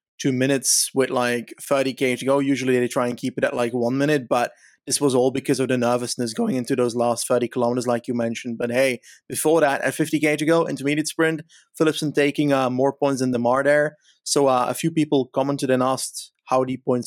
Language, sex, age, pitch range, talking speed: English, male, 30-49, 125-140 Hz, 225 wpm